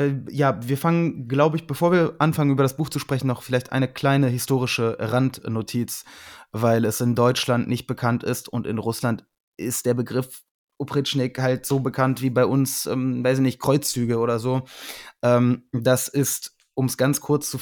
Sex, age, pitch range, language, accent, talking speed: male, 20-39, 115-130 Hz, German, German, 185 wpm